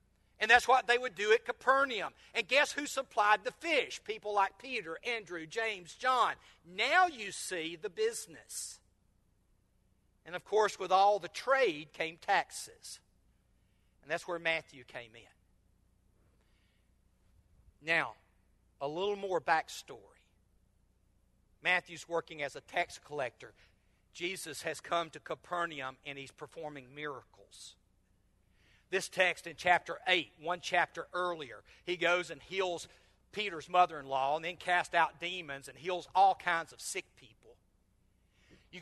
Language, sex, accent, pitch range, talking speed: English, male, American, 140-205 Hz, 135 wpm